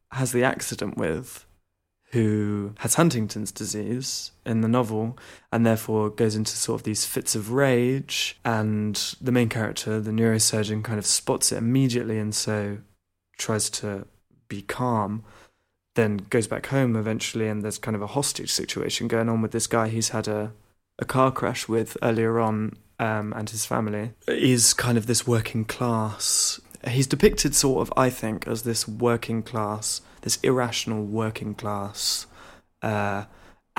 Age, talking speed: 20-39, 160 wpm